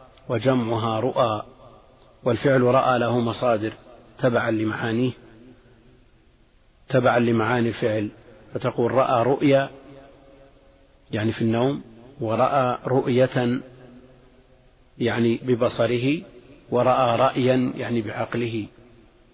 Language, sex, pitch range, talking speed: Arabic, male, 115-130 Hz, 80 wpm